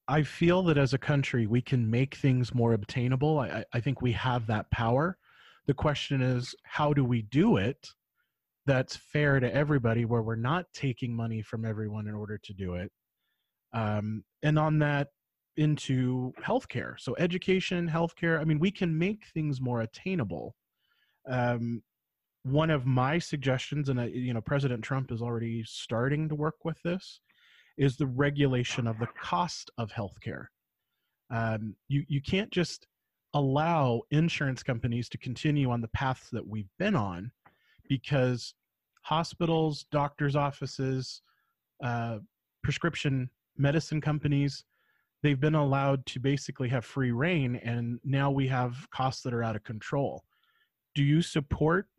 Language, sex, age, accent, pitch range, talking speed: English, male, 30-49, American, 120-150 Hz, 150 wpm